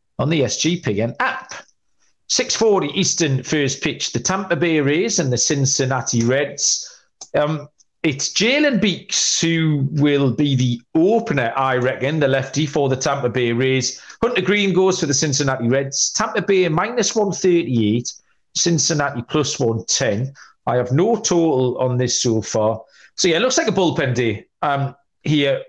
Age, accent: 40-59, British